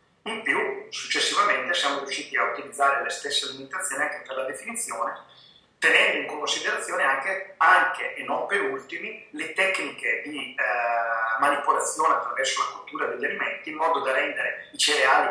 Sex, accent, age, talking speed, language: male, native, 30-49, 155 wpm, Italian